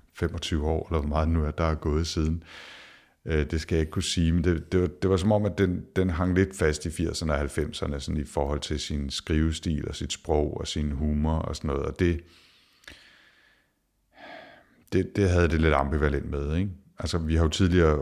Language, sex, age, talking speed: Danish, male, 60-79, 215 wpm